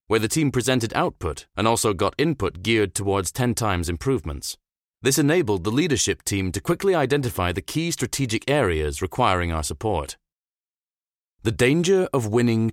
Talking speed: 155 wpm